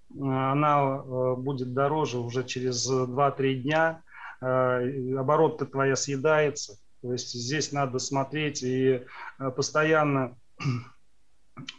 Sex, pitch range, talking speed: male, 130-155 Hz, 85 wpm